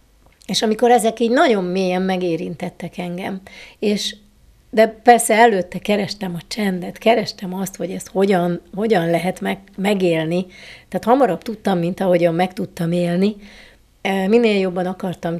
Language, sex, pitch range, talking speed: Hungarian, female, 185-215 Hz, 135 wpm